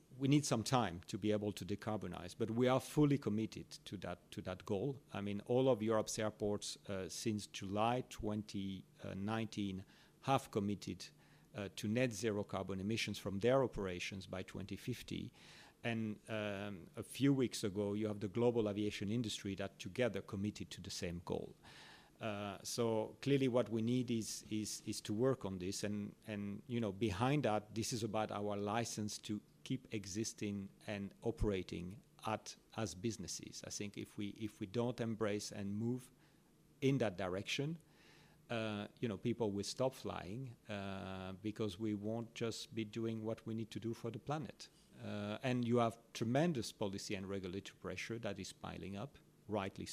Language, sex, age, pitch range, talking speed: English, male, 40-59, 100-120 Hz, 170 wpm